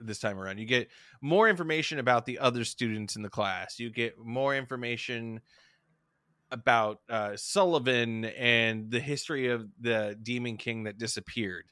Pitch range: 105-130 Hz